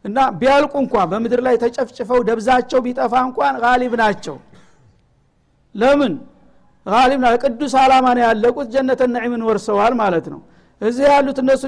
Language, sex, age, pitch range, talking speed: Amharic, male, 60-79, 225-265 Hz, 125 wpm